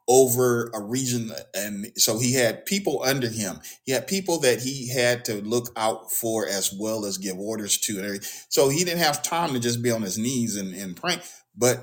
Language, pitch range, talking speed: English, 105-125 Hz, 215 wpm